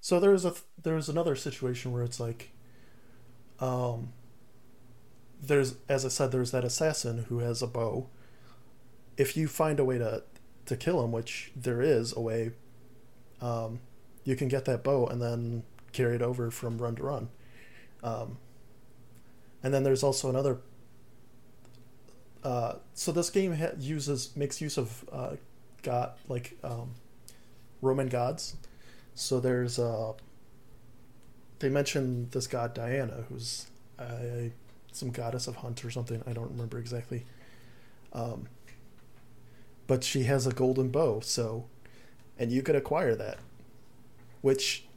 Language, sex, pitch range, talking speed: English, male, 120-130 Hz, 140 wpm